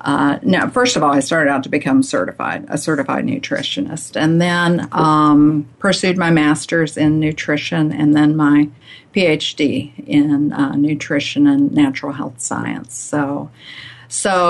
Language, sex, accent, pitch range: English, female, American, 145-170 Hz